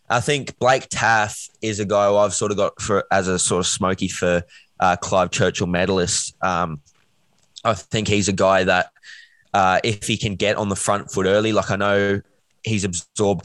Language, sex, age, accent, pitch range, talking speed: English, male, 20-39, Australian, 90-105 Hz, 200 wpm